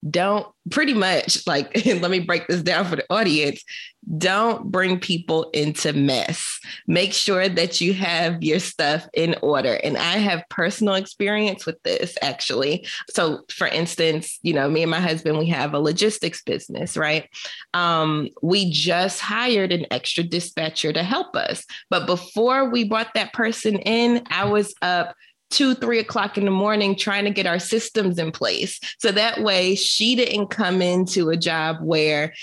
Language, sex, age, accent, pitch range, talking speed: English, female, 20-39, American, 165-210 Hz, 170 wpm